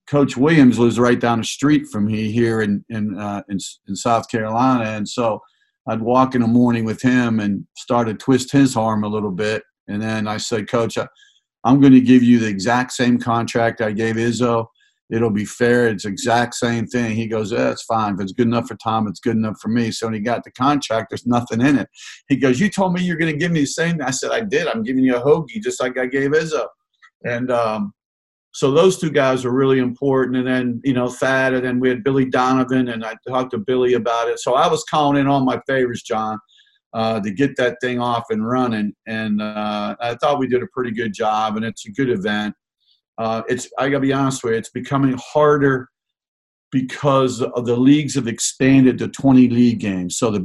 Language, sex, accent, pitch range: English, male, American, 110-130 Hz